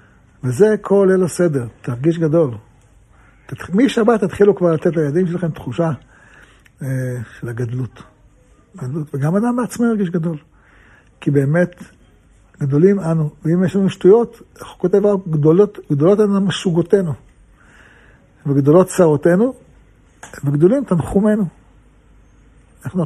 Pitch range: 135-185 Hz